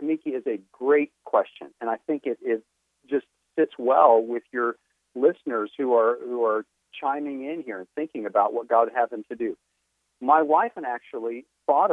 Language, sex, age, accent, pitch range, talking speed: English, male, 50-69, American, 115-155 Hz, 190 wpm